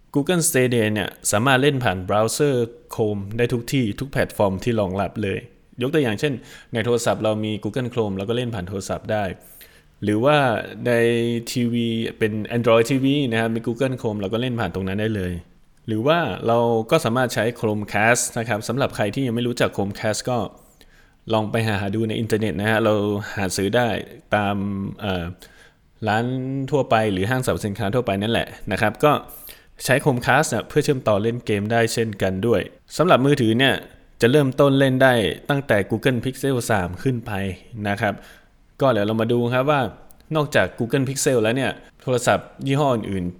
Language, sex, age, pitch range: Thai, male, 20-39, 105-130 Hz